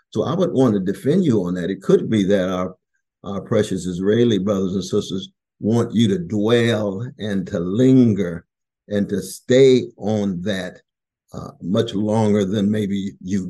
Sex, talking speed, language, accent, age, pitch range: male, 170 wpm, English, American, 50-69, 95-105 Hz